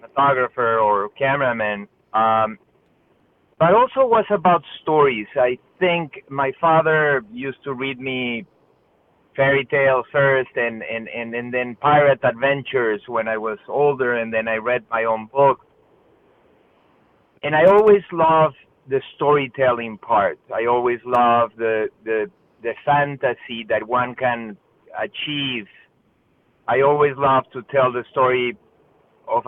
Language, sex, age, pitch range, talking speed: English, male, 30-49, 115-145 Hz, 130 wpm